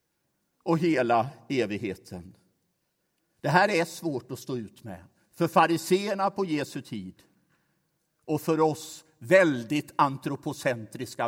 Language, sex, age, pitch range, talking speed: Swedish, male, 60-79, 115-170 Hz, 110 wpm